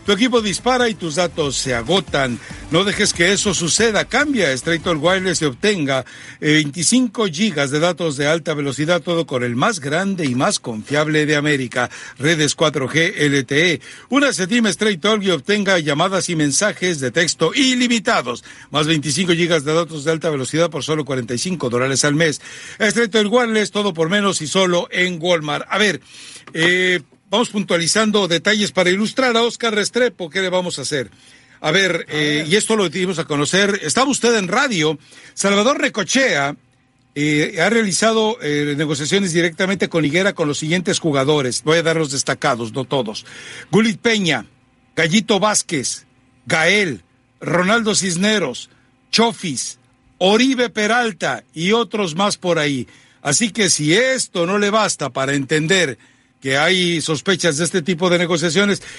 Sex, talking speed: male, 160 wpm